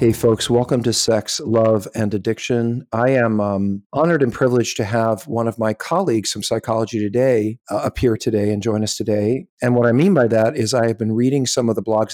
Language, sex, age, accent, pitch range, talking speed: English, male, 50-69, American, 115-135 Hz, 220 wpm